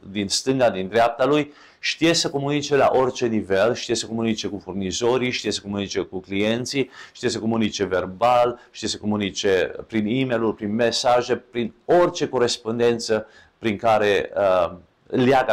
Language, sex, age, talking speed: English, male, 40-59, 150 wpm